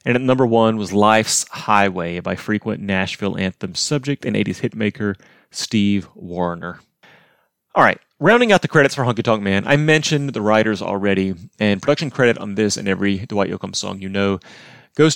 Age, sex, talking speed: 30-49, male, 175 wpm